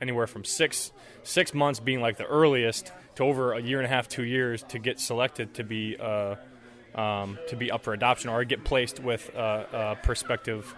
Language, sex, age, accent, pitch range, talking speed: English, male, 20-39, American, 115-130 Hz, 205 wpm